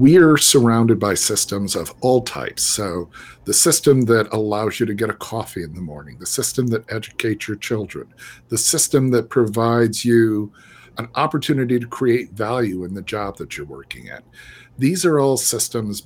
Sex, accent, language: male, American, English